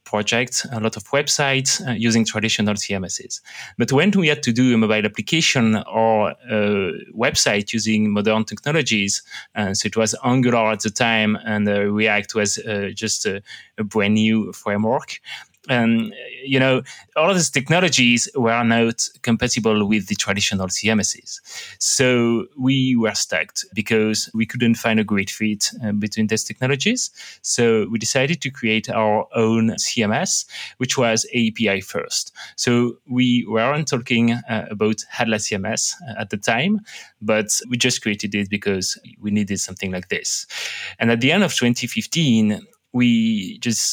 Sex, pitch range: male, 105-125 Hz